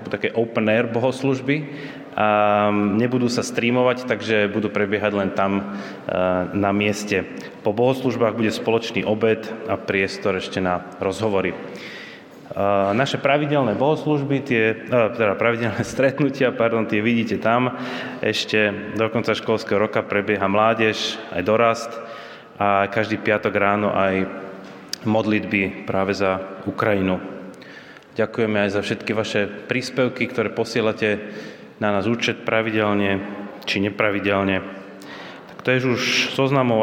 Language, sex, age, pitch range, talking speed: Slovak, male, 20-39, 100-125 Hz, 120 wpm